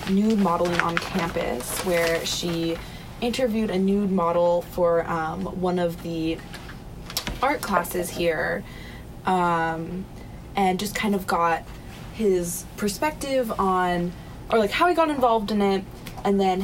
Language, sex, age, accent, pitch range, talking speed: English, female, 20-39, American, 175-200 Hz, 135 wpm